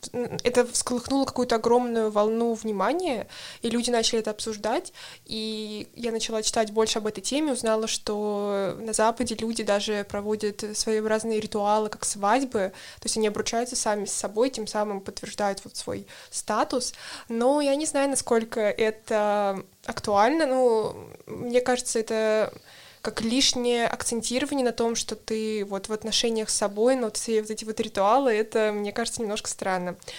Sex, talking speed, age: female, 155 wpm, 20-39